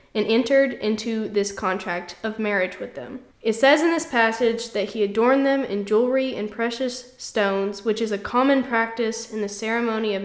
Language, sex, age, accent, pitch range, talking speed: English, female, 10-29, American, 205-255 Hz, 185 wpm